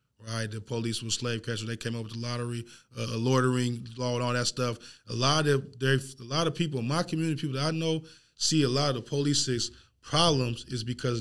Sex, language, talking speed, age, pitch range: male, English, 230 wpm, 20-39, 125-175 Hz